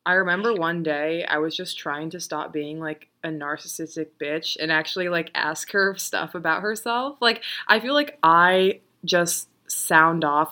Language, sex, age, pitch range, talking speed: English, female, 20-39, 155-185 Hz, 175 wpm